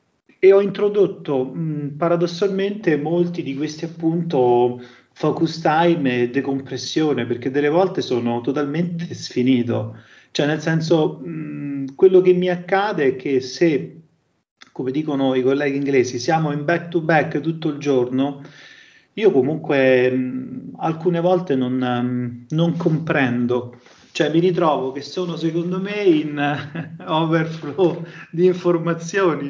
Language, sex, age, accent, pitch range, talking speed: Italian, male, 30-49, native, 135-175 Hz, 120 wpm